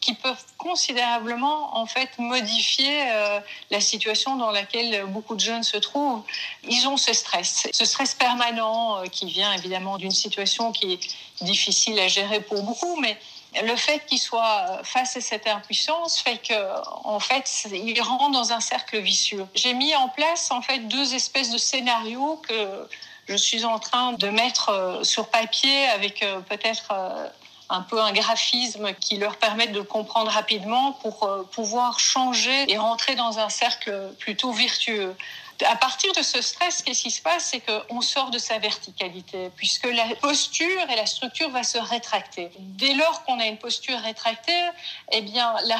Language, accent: French, French